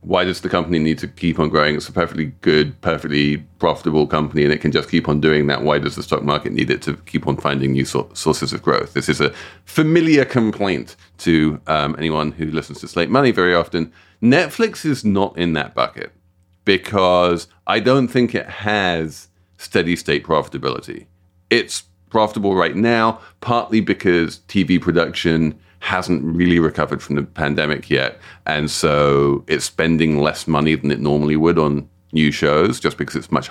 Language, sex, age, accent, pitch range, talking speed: English, male, 40-59, British, 75-95 Hz, 180 wpm